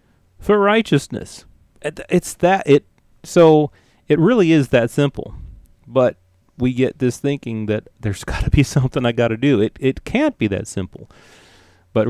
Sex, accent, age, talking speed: male, American, 40-59, 165 wpm